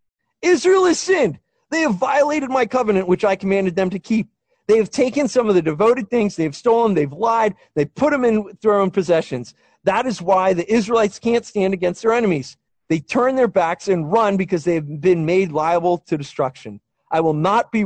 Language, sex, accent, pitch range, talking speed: English, male, American, 180-260 Hz, 200 wpm